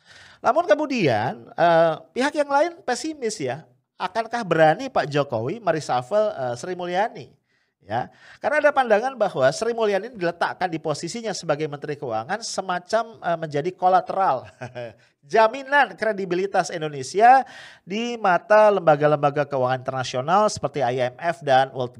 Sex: male